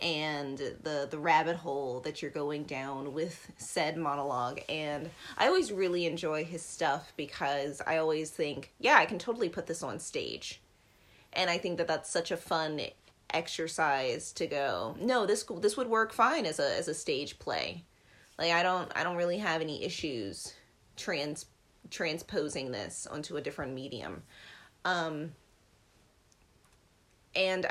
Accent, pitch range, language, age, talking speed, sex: American, 135-175 Hz, English, 30-49, 155 wpm, female